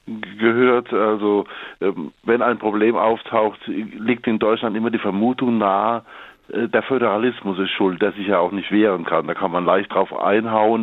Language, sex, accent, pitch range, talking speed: German, male, German, 105-125 Hz, 165 wpm